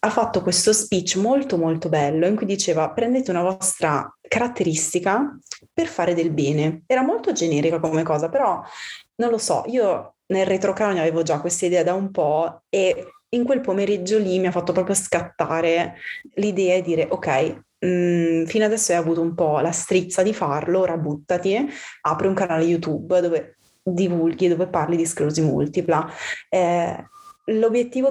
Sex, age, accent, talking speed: female, 20-39, native, 165 wpm